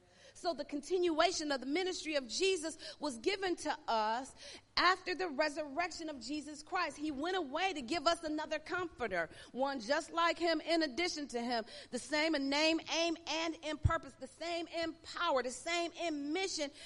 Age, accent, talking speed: 40-59, American, 180 wpm